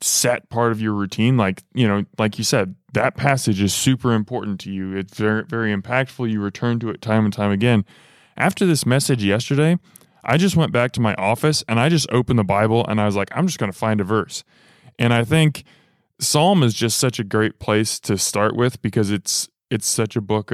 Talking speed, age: 225 wpm, 20-39